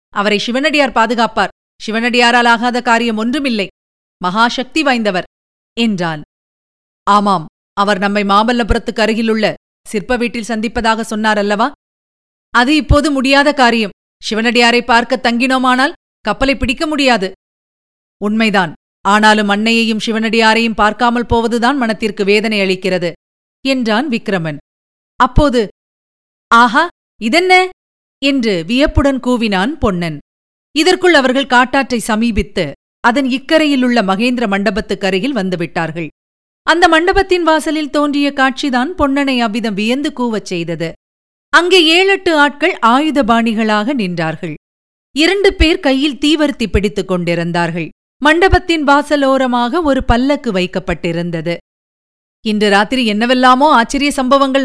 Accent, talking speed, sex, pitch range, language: native, 95 wpm, female, 210-275 Hz, Tamil